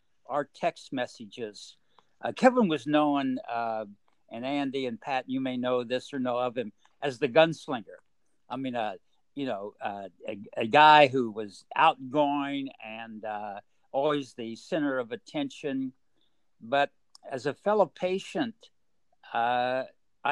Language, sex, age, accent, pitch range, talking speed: English, male, 60-79, American, 125-160 Hz, 140 wpm